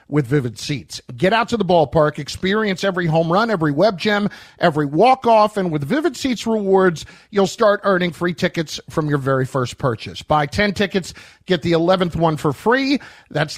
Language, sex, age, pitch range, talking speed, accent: English, male, 50-69, 155-210 Hz, 190 wpm, American